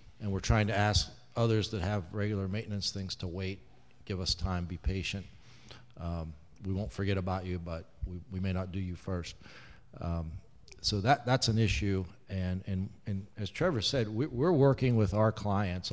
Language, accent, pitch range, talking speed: English, American, 90-105 Hz, 190 wpm